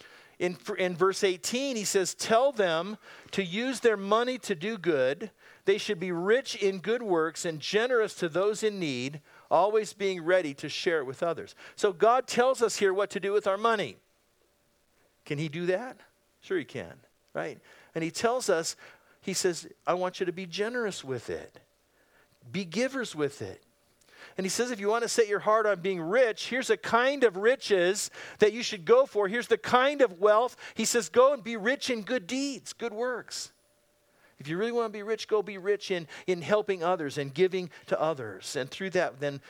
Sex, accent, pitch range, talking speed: male, American, 170-230 Hz, 205 wpm